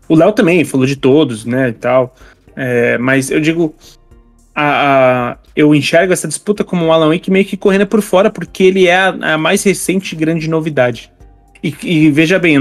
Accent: Brazilian